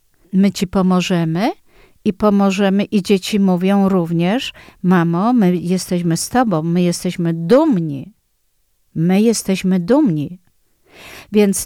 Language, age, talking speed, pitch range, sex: Polish, 50-69, 110 wpm, 180-230 Hz, female